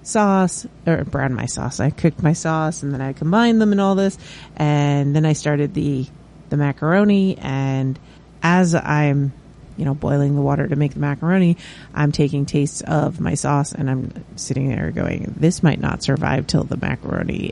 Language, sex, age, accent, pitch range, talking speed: English, female, 30-49, American, 145-185 Hz, 185 wpm